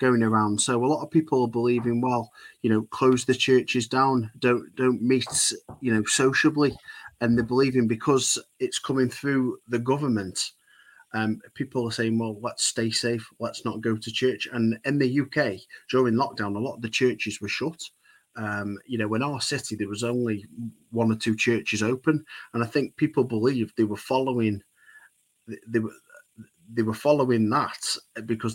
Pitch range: 110-130 Hz